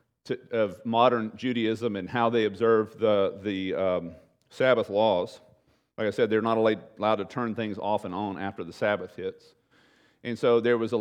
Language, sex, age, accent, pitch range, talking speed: English, male, 40-59, American, 100-125 Hz, 190 wpm